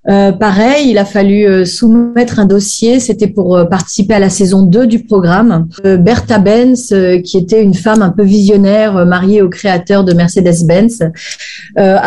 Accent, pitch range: French, 190-225 Hz